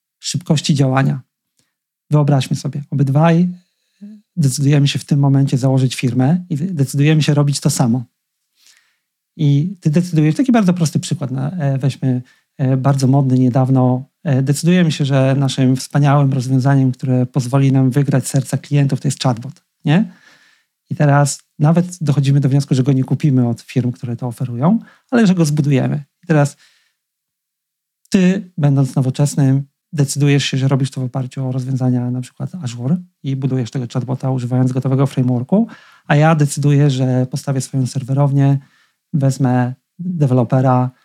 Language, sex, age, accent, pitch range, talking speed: Polish, male, 40-59, native, 135-160 Hz, 140 wpm